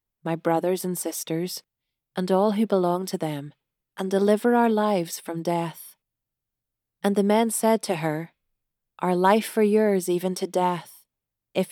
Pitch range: 165-205 Hz